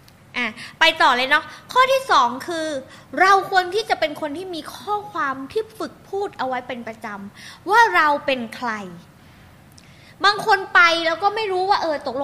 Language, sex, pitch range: Thai, female, 265-365 Hz